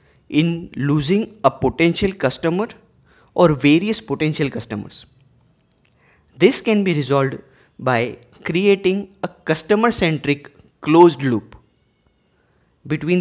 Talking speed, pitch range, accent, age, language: 95 wpm, 130-195 Hz, Indian, 20-39, English